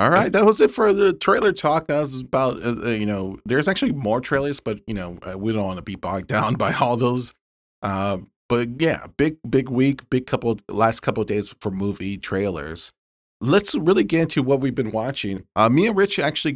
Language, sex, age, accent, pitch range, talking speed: English, male, 30-49, American, 100-130 Hz, 215 wpm